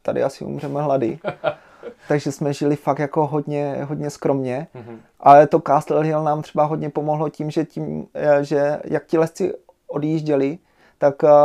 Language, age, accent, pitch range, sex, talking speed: Czech, 30-49, native, 140-150 Hz, male, 150 wpm